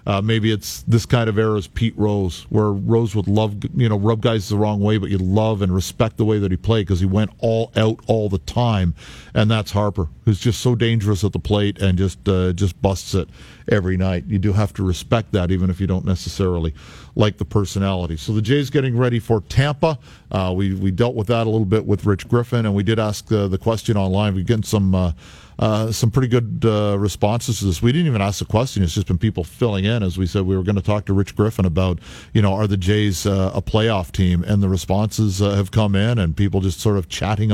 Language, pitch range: English, 95-110 Hz